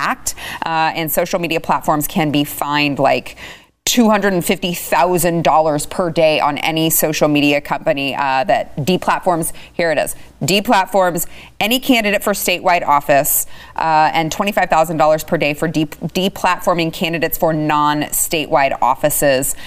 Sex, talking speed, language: female, 125 wpm, English